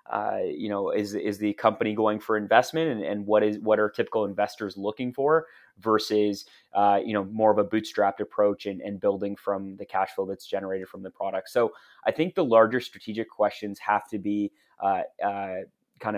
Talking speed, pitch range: 200 wpm, 100-115 Hz